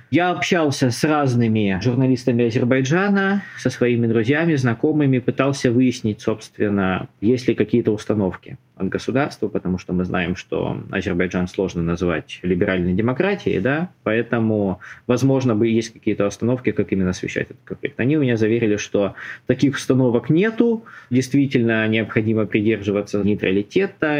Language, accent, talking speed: Russian, native, 130 wpm